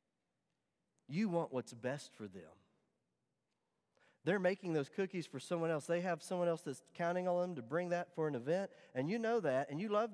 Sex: male